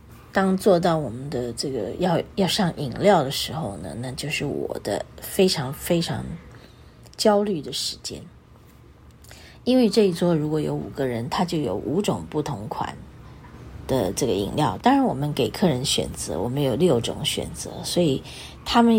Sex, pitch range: female, 135-185 Hz